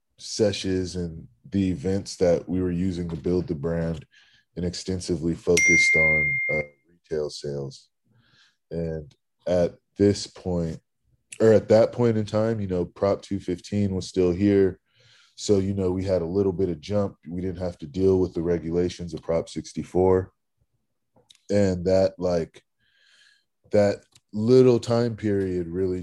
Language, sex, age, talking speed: English, male, 20-39, 150 wpm